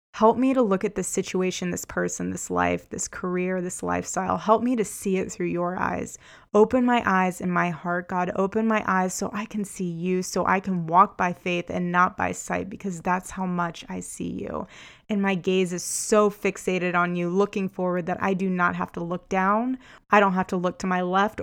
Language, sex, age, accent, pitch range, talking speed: English, female, 20-39, American, 180-200 Hz, 225 wpm